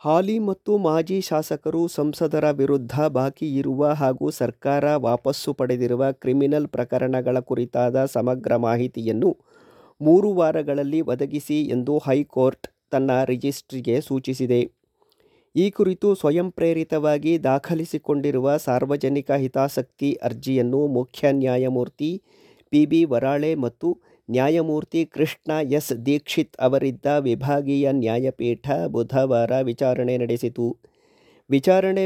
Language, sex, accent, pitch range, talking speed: Kannada, male, native, 130-160 Hz, 90 wpm